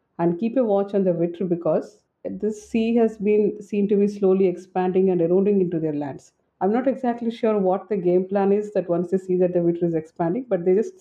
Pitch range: 180-215 Hz